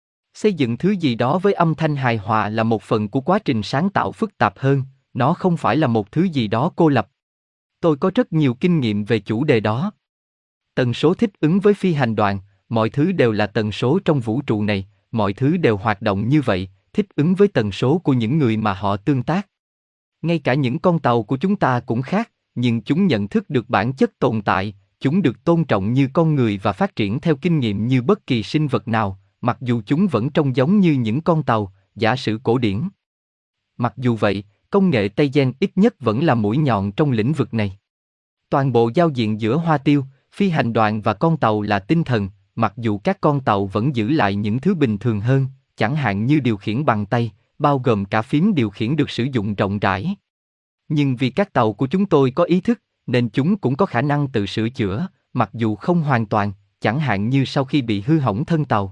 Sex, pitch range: male, 110-155 Hz